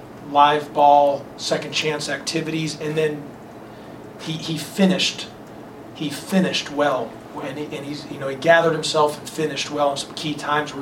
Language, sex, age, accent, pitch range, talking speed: English, male, 40-59, American, 145-160 Hz, 165 wpm